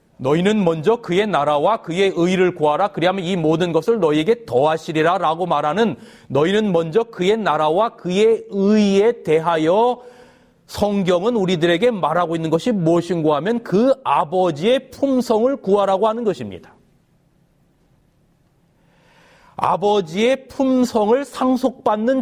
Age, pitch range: 30-49, 160-220 Hz